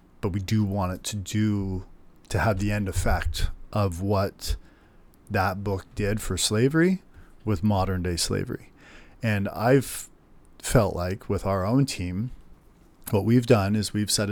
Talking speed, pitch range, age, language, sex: 155 wpm, 95-110 Hz, 40-59, English, male